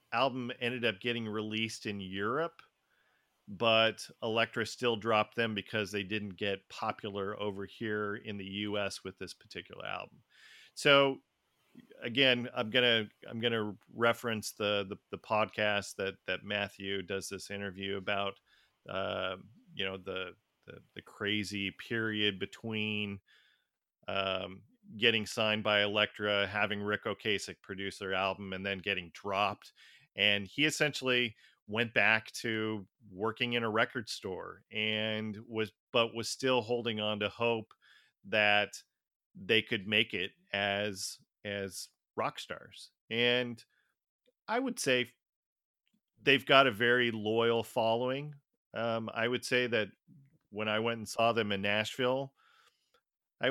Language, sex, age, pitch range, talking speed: English, male, 40-59, 100-120 Hz, 135 wpm